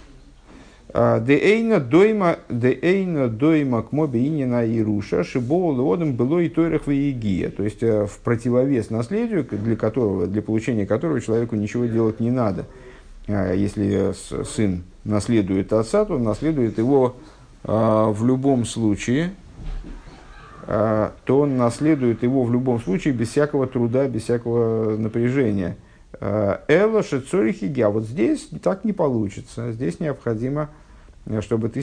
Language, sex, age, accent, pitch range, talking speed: Russian, male, 50-69, native, 110-140 Hz, 100 wpm